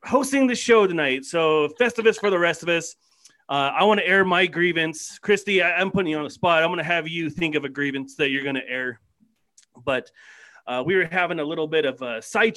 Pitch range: 150-205 Hz